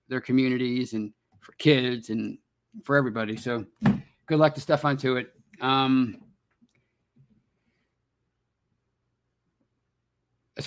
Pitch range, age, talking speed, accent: 125-150 Hz, 50-69, 95 wpm, American